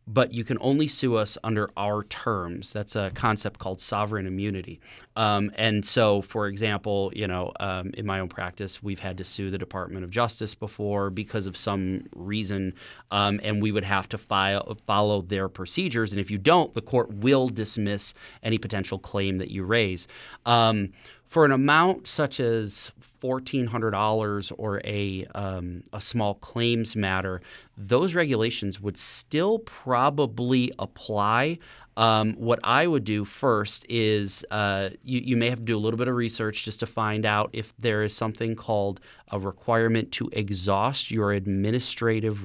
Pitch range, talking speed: 100-115 Hz, 165 wpm